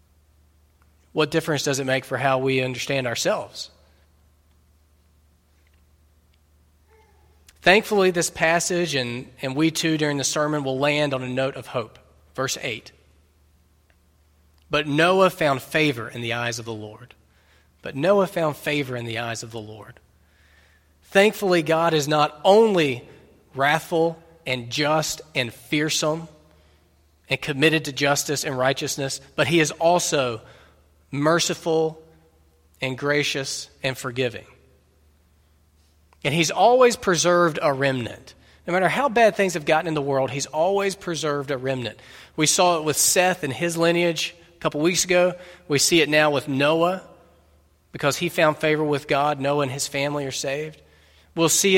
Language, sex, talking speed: English, male, 145 wpm